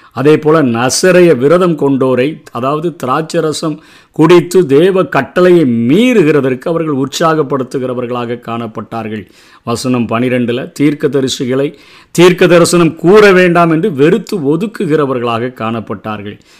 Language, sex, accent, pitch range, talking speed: Tamil, male, native, 125-170 Hz, 90 wpm